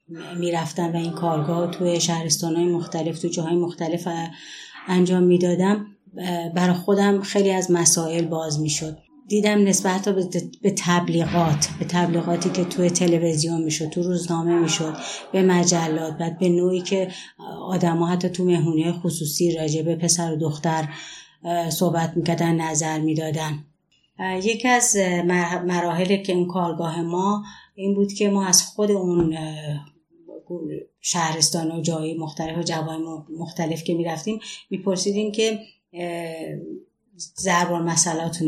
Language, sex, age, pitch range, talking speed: Persian, female, 30-49, 165-185 Hz, 130 wpm